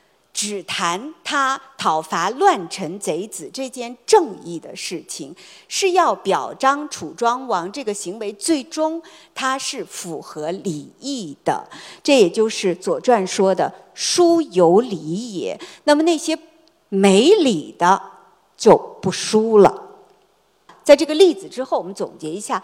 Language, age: Chinese, 50-69